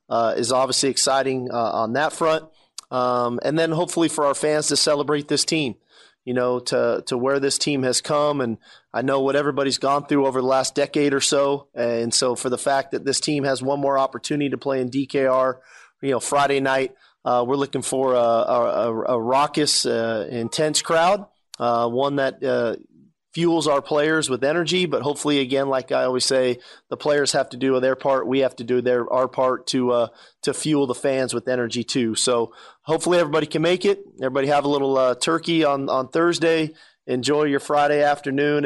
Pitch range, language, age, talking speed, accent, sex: 130-145 Hz, English, 30-49, 205 wpm, American, male